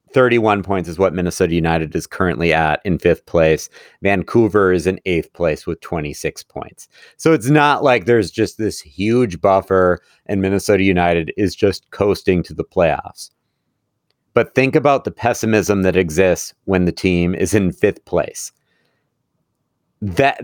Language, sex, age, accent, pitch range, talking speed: English, male, 40-59, American, 90-130 Hz, 155 wpm